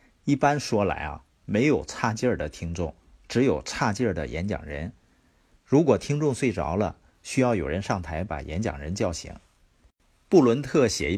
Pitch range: 85-125 Hz